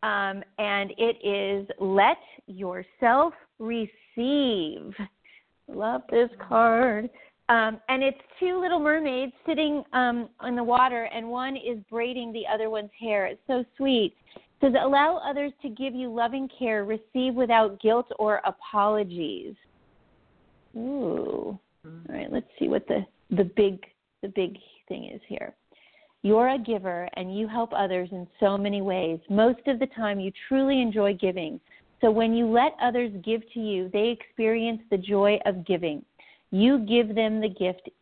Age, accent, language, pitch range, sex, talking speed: 40-59, American, English, 195-245 Hz, female, 155 wpm